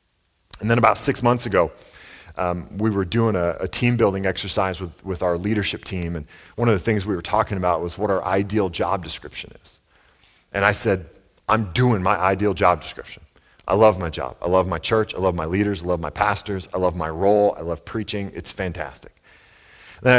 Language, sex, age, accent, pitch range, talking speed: English, male, 40-59, American, 85-105 Hz, 210 wpm